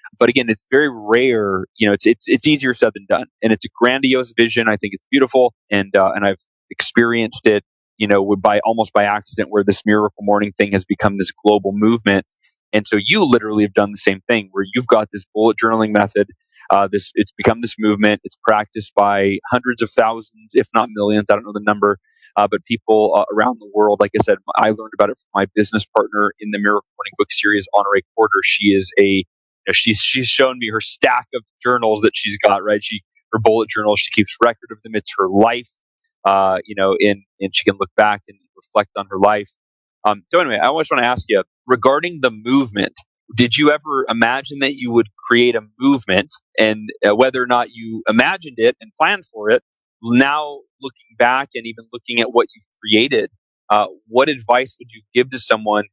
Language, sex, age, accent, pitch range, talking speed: English, male, 30-49, American, 105-120 Hz, 220 wpm